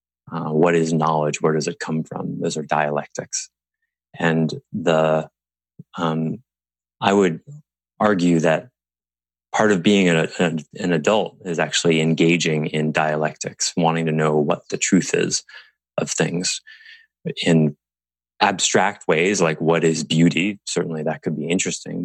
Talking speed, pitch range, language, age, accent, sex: 140 wpm, 75-85 Hz, English, 20-39, American, male